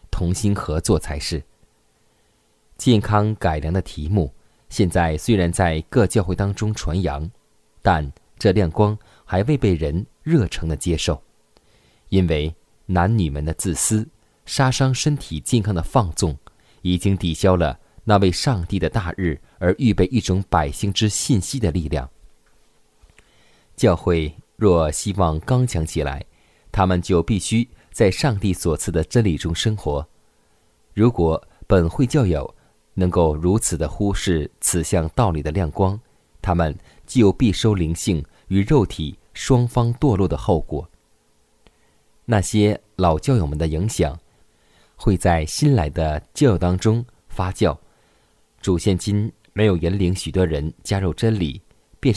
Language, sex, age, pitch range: Chinese, male, 20-39, 85-110 Hz